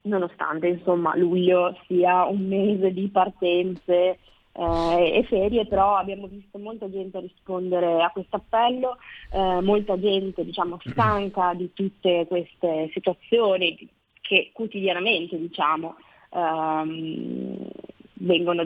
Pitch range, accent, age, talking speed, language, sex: 180-215 Hz, native, 20-39, 110 wpm, Italian, female